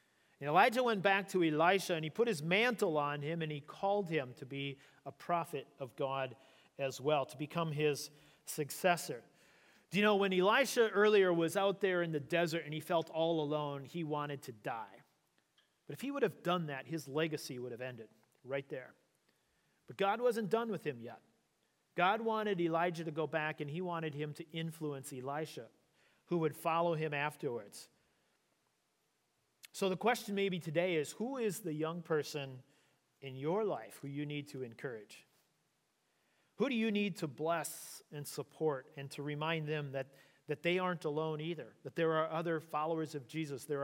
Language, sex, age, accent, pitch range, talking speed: English, male, 40-59, American, 145-180 Hz, 180 wpm